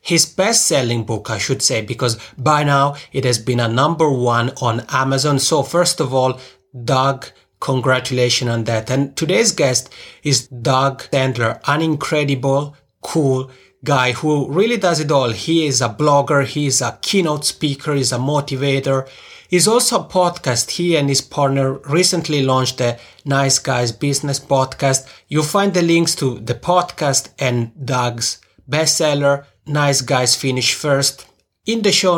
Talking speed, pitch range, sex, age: 155 wpm, 130-165 Hz, male, 30-49